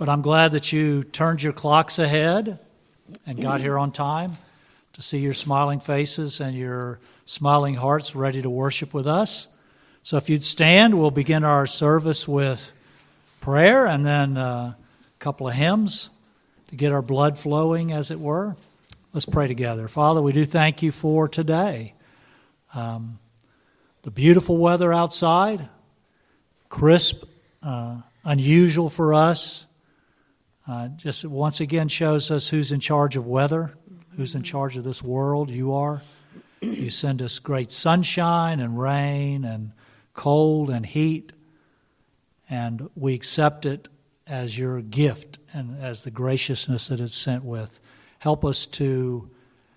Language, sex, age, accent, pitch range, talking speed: English, male, 50-69, American, 130-155 Hz, 145 wpm